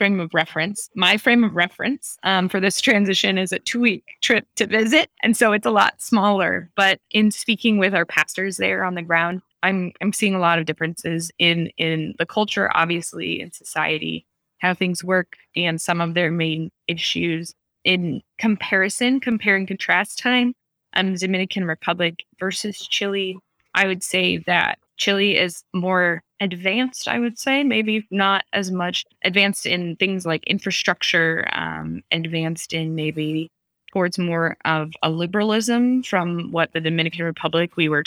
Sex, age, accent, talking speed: female, 20-39, American, 160 wpm